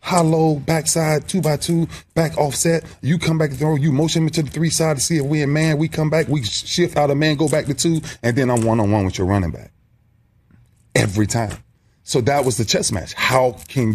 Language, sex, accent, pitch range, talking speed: English, male, American, 95-130 Hz, 235 wpm